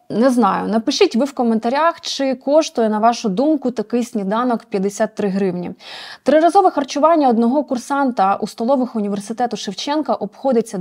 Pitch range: 210-280 Hz